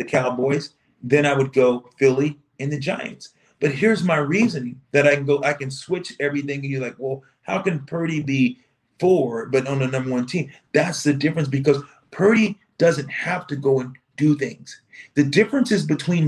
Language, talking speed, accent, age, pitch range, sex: English, 190 wpm, American, 40-59, 135-180 Hz, male